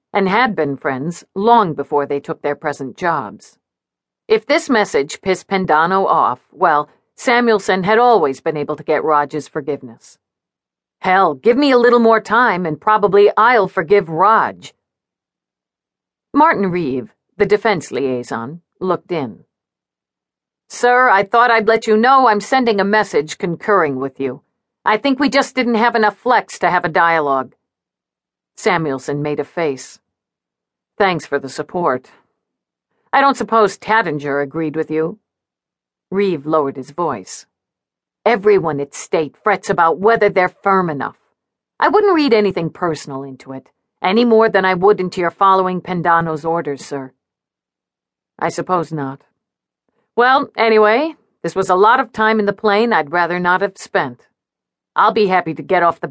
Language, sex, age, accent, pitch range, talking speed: English, female, 50-69, American, 155-220 Hz, 155 wpm